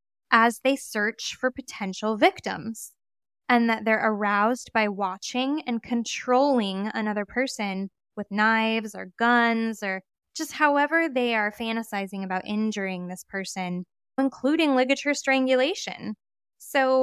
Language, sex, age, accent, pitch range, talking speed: English, female, 10-29, American, 210-260 Hz, 120 wpm